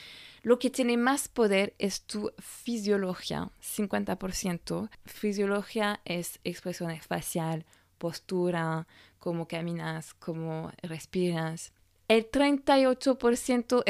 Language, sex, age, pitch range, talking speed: Spanish, female, 20-39, 180-225 Hz, 85 wpm